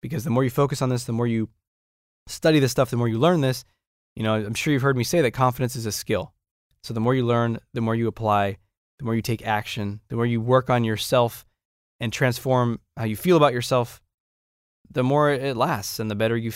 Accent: American